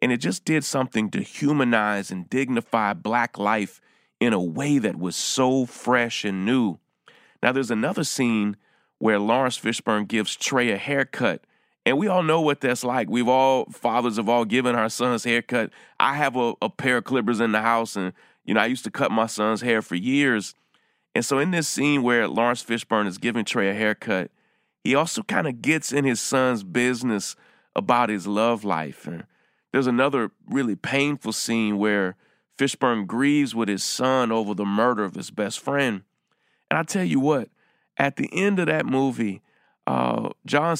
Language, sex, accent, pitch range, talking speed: English, male, American, 110-135 Hz, 185 wpm